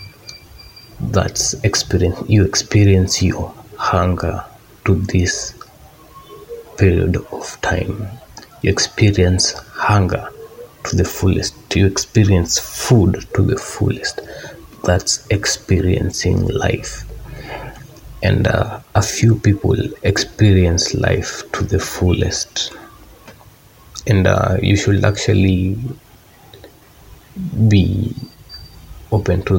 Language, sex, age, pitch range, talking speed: Swahili, male, 30-49, 90-105 Hz, 85 wpm